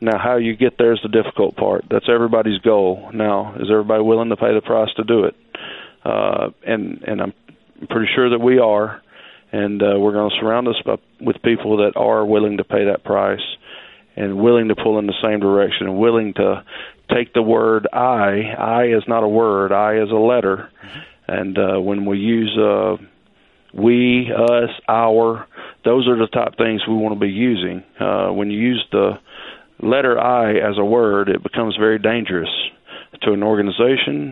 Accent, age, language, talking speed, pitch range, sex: American, 40-59, English, 190 wpm, 105-120 Hz, male